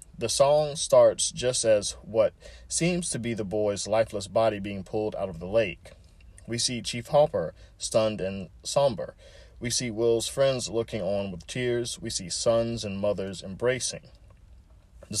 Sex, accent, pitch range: male, American, 90-120 Hz